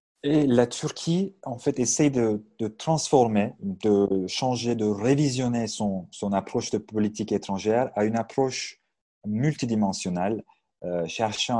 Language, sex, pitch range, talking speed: Turkish, male, 105-130 Hz, 130 wpm